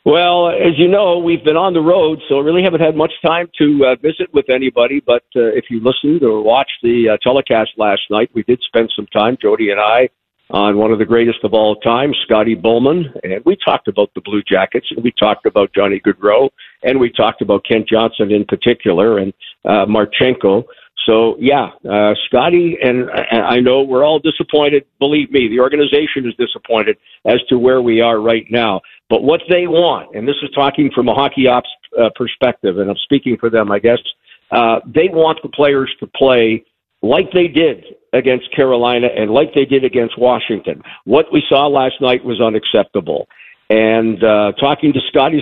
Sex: male